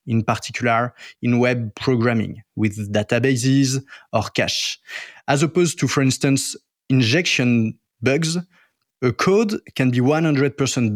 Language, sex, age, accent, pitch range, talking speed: English, male, 20-39, French, 120-150 Hz, 115 wpm